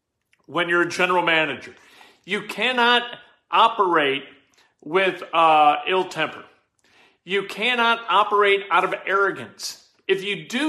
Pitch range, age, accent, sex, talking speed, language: 175-215 Hz, 40-59, American, male, 120 wpm, English